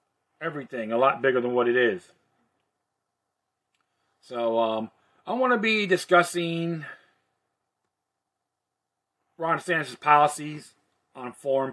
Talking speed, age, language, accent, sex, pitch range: 100 wpm, 40-59, English, American, male, 145-195 Hz